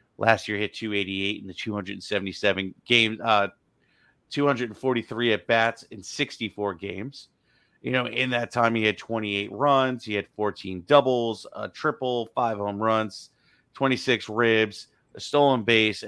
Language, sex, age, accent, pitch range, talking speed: English, male, 30-49, American, 105-125 Hz, 140 wpm